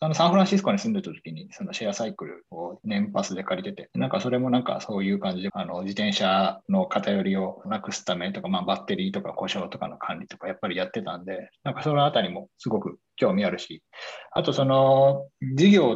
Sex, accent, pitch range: male, native, 125-200 Hz